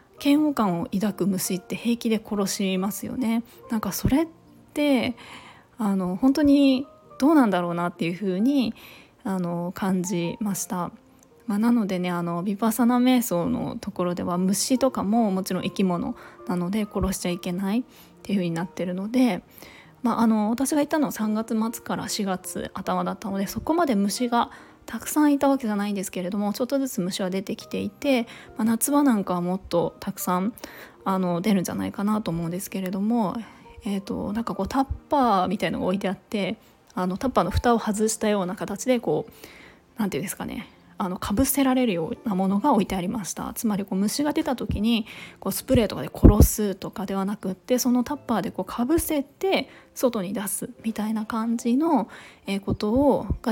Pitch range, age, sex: 190-245 Hz, 20-39, female